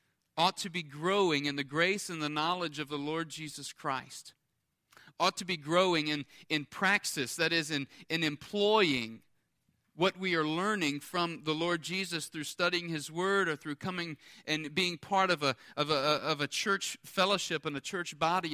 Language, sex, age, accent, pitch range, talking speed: English, male, 40-59, American, 150-190 Hz, 185 wpm